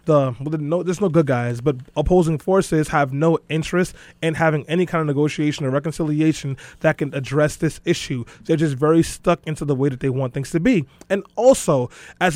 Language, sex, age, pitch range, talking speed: English, male, 20-39, 150-175 Hz, 195 wpm